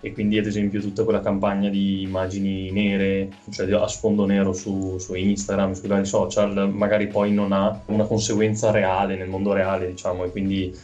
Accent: native